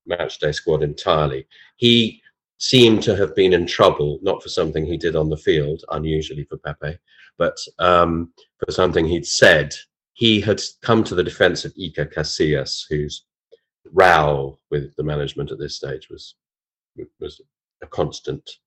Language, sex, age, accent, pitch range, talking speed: English, male, 40-59, British, 75-110 Hz, 160 wpm